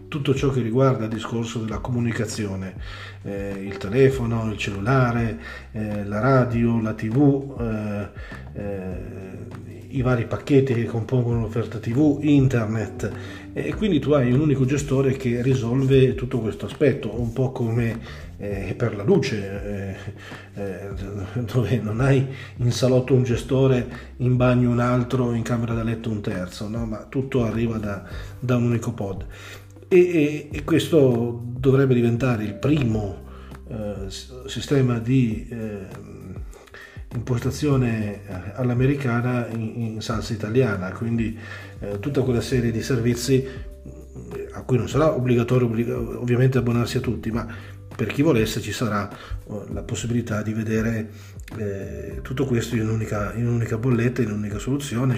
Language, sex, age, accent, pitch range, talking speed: Italian, male, 40-59, native, 105-125 Hz, 130 wpm